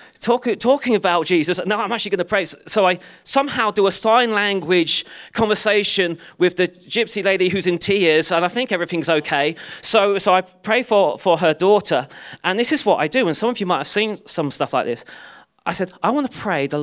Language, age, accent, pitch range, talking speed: English, 30-49, British, 140-190 Hz, 220 wpm